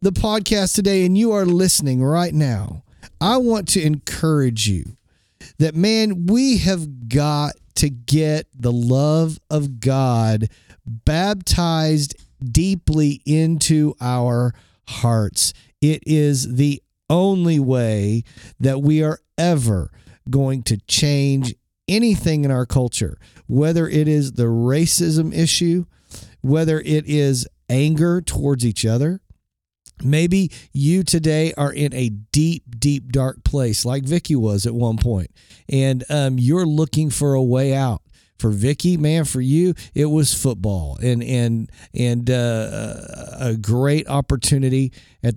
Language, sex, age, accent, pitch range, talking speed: English, male, 50-69, American, 120-155 Hz, 130 wpm